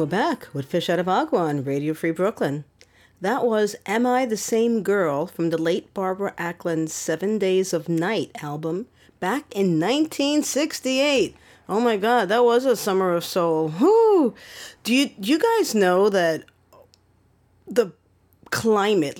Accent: American